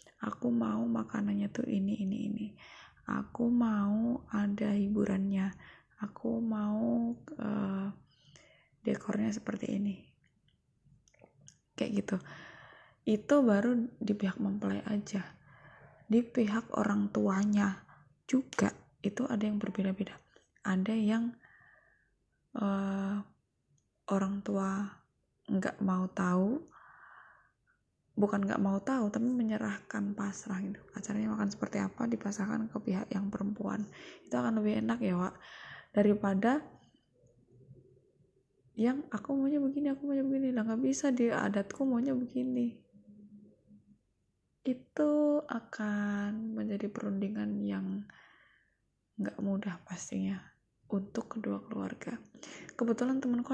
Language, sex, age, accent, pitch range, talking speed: Indonesian, female, 20-39, native, 195-235 Hz, 105 wpm